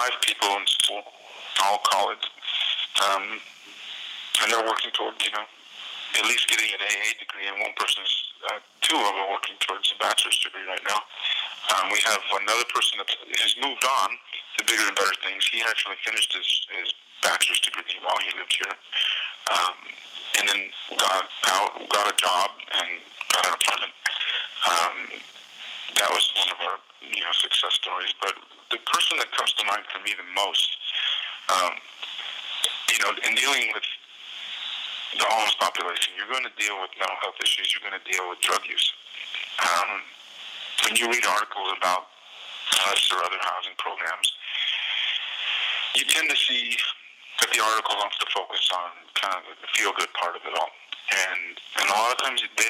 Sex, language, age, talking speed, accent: male, English, 40-59, 175 wpm, American